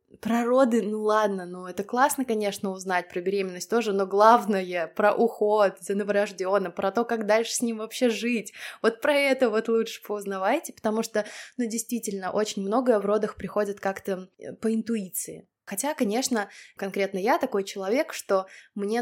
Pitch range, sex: 190-225 Hz, female